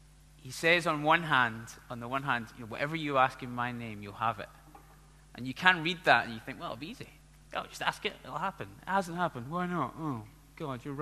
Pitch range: 120-165 Hz